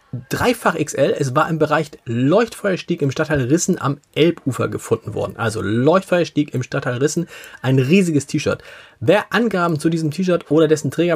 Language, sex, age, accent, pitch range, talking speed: German, male, 40-59, German, 125-170 Hz, 160 wpm